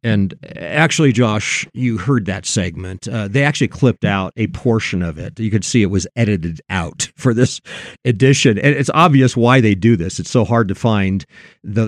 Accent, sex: American, male